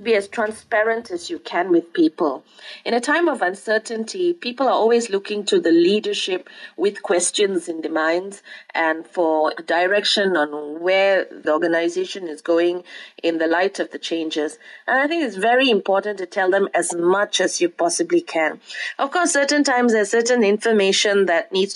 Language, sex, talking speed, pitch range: English, female, 175 wpm, 185-250 Hz